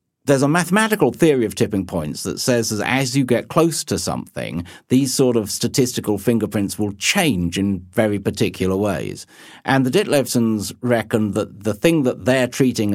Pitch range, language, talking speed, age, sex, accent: 100-125 Hz, English, 170 wpm, 50-69, male, British